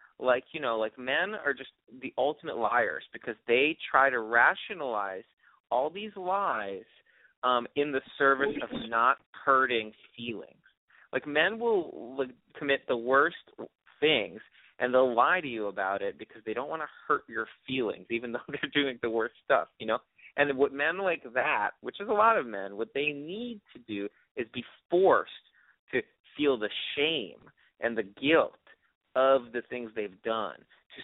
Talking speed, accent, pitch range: 175 wpm, American, 115-150 Hz